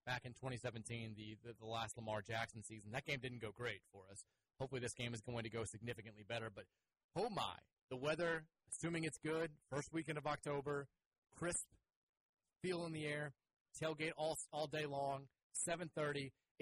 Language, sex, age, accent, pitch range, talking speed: English, male, 30-49, American, 110-140 Hz, 175 wpm